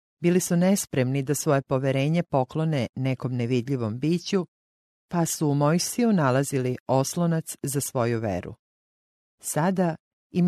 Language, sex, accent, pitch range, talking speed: English, female, Croatian, 125-165 Hz, 120 wpm